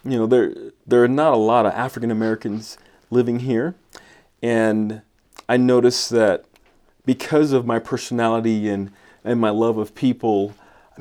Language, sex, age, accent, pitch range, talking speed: English, male, 30-49, American, 110-130 Hz, 155 wpm